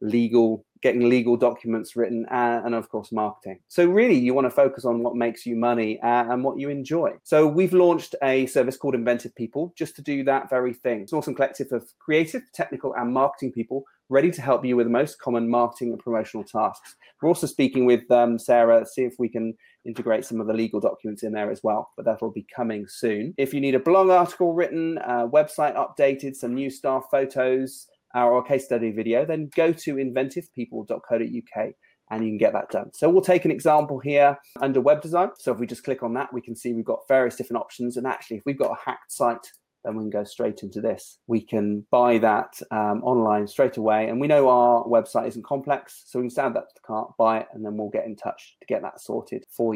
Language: English